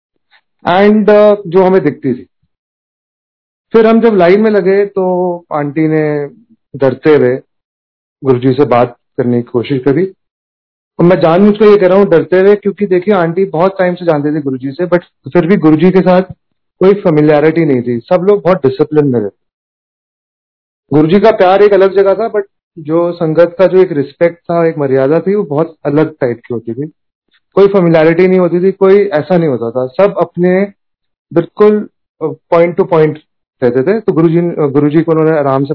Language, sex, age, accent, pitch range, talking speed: Hindi, male, 40-59, native, 135-180 Hz, 185 wpm